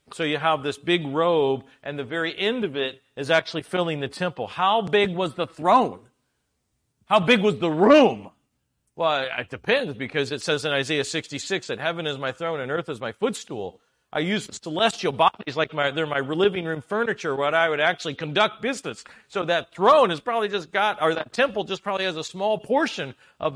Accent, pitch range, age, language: American, 140-195 Hz, 50-69, English